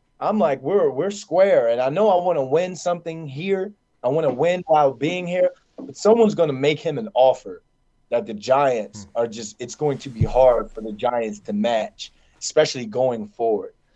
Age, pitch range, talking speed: 20-39, 125-165 Hz, 200 wpm